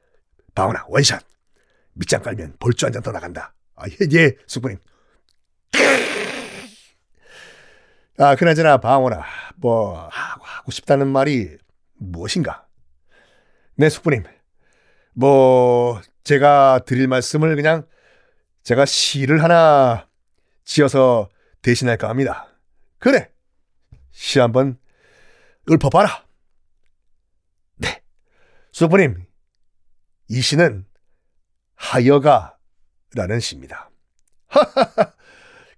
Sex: male